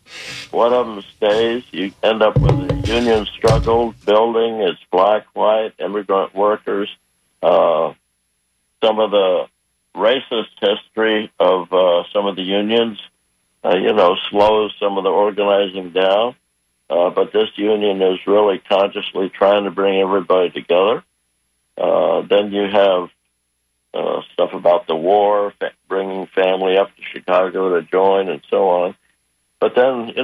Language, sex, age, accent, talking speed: English, male, 60-79, American, 145 wpm